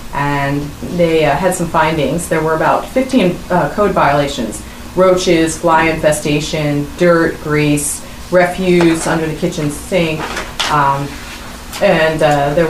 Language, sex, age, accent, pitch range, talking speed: English, female, 30-49, American, 155-190 Hz, 130 wpm